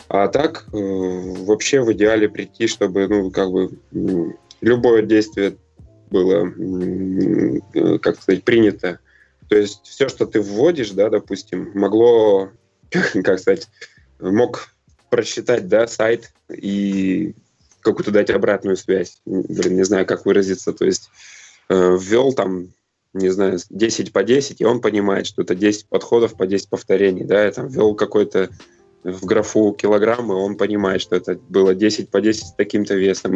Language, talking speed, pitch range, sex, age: Russian, 140 wpm, 95-105 Hz, male, 20-39